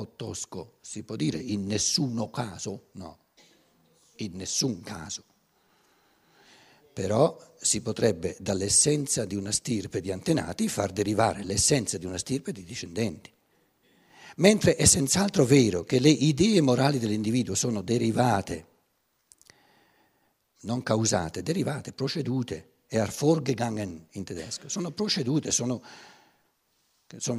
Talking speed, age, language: 110 wpm, 60-79, Italian